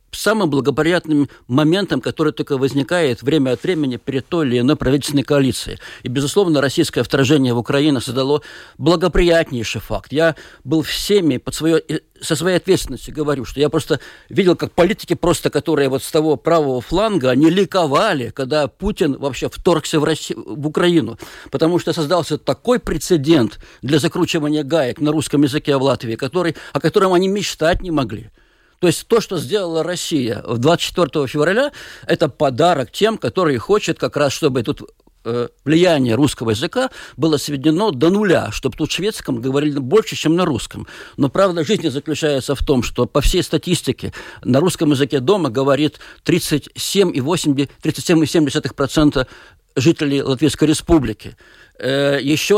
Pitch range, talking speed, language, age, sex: 135-170 Hz, 145 wpm, Russian, 50-69, male